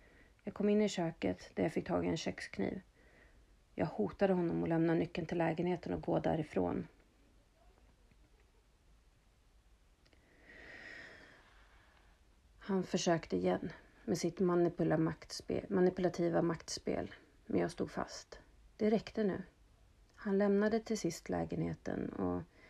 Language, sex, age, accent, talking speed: Swedish, female, 40-59, native, 115 wpm